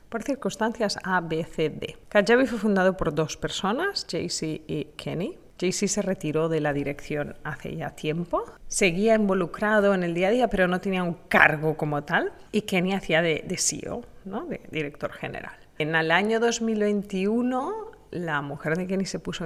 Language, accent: Spanish, Spanish